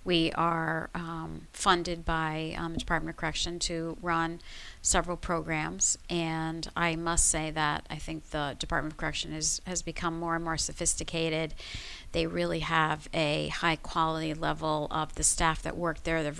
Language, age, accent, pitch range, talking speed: English, 40-59, American, 155-175 Hz, 170 wpm